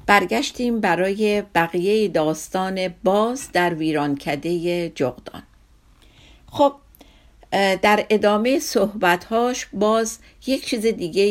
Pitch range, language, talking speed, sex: 165-240 Hz, Persian, 90 wpm, female